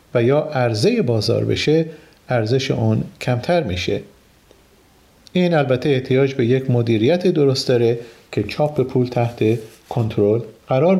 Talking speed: 125 wpm